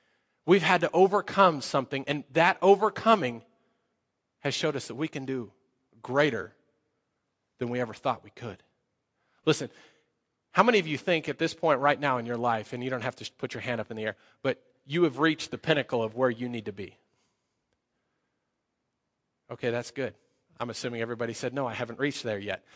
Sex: male